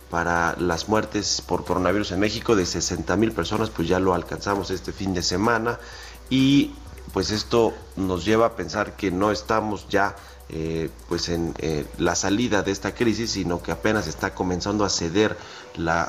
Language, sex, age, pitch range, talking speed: Spanish, male, 40-59, 85-105 Hz, 175 wpm